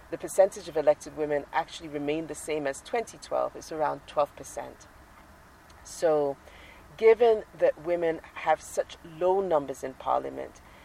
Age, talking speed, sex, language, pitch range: 40-59, 135 wpm, female, English, 145-170 Hz